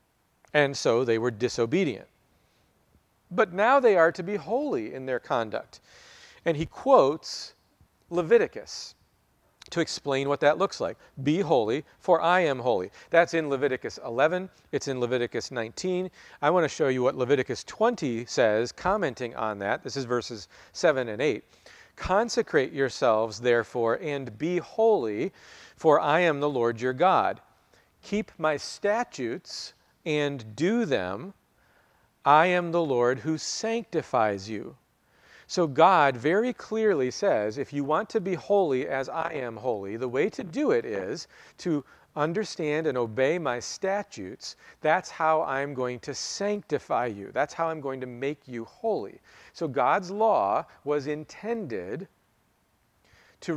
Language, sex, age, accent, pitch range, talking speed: English, male, 40-59, American, 130-195 Hz, 145 wpm